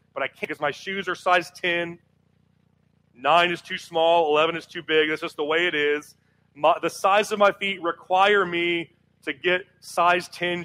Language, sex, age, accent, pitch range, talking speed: English, male, 30-49, American, 160-180 Hz, 195 wpm